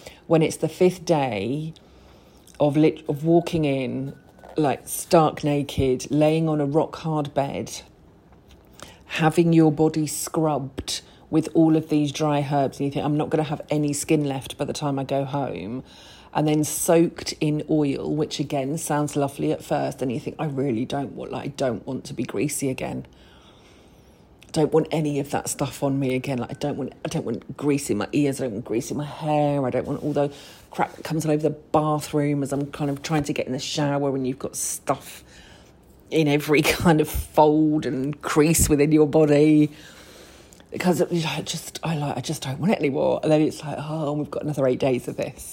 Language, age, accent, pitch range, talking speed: English, 40-59, British, 140-155 Hz, 210 wpm